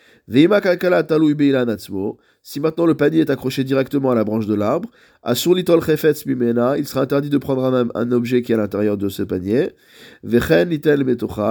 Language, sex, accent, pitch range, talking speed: French, male, French, 120-150 Hz, 135 wpm